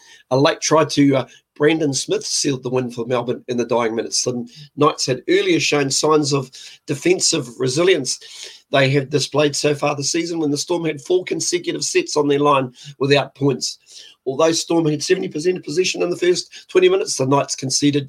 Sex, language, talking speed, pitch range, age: male, English, 190 wpm, 135-165 Hz, 40-59